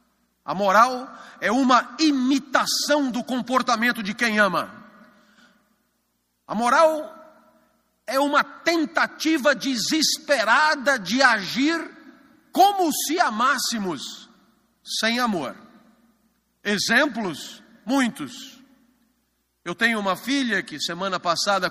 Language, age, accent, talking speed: Portuguese, 50-69, Brazilian, 90 wpm